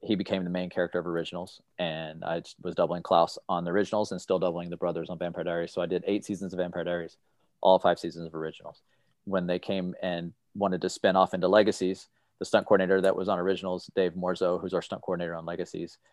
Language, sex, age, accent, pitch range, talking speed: English, male, 30-49, American, 90-95 Hz, 225 wpm